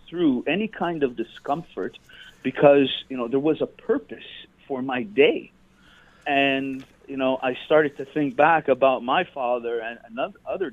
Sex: male